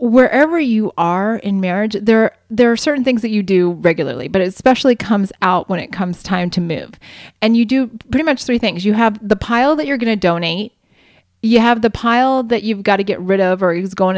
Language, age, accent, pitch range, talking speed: English, 30-49, American, 185-235 Hz, 235 wpm